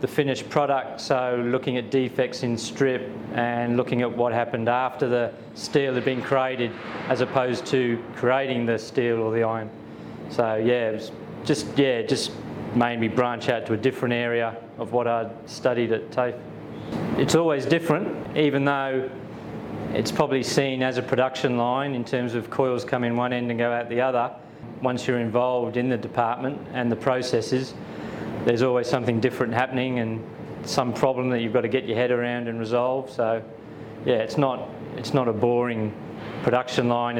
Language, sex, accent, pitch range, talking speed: English, male, Australian, 120-130 Hz, 175 wpm